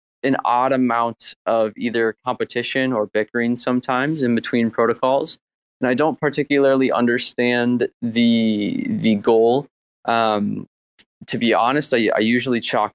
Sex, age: male, 20-39